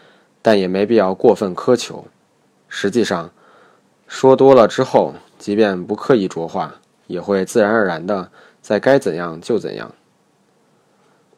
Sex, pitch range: male, 90-110 Hz